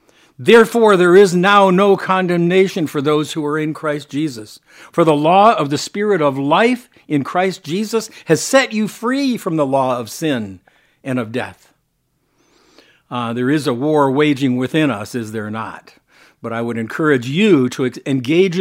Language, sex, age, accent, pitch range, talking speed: English, male, 60-79, American, 125-180 Hz, 175 wpm